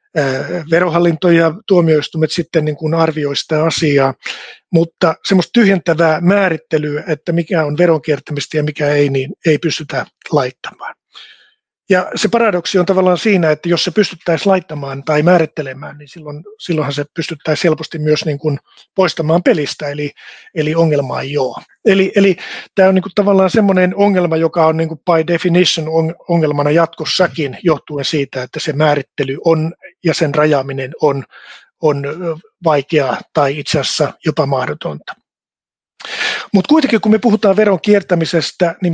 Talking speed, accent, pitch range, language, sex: 145 wpm, native, 150-180 Hz, Finnish, male